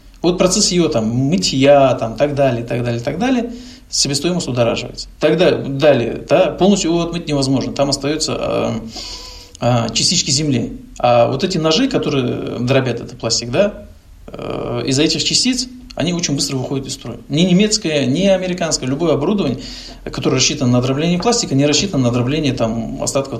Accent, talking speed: native, 160 wpm